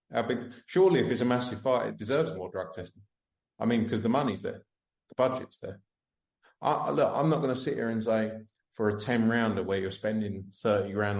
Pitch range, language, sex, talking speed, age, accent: 95-120 Hz, English, male, 210 wpm, 30-49, British